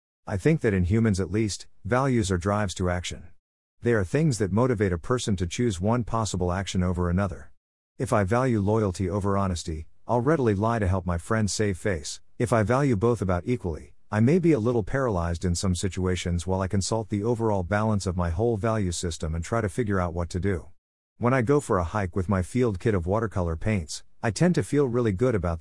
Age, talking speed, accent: 50-69, 225 wpm, American